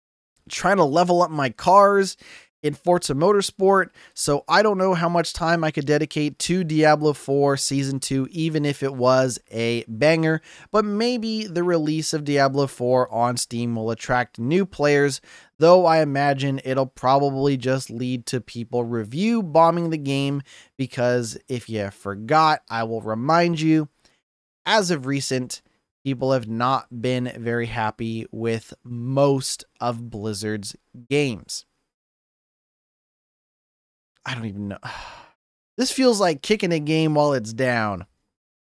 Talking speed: 140 wpm